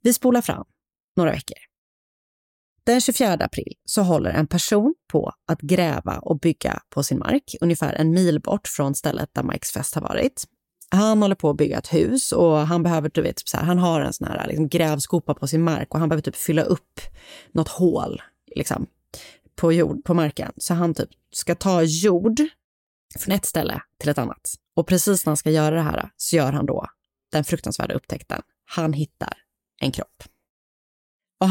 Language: Swedish